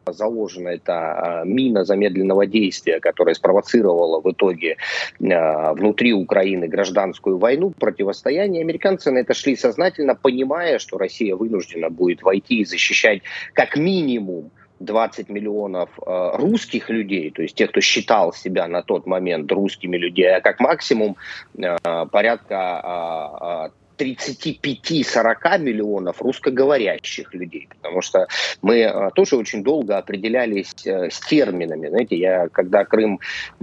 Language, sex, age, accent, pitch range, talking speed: Russian, male, 30-49, native, 95-130 Hz, 125 wpm